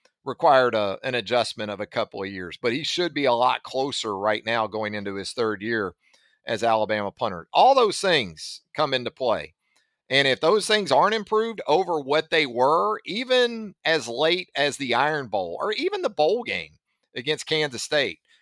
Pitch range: 115-155 Hz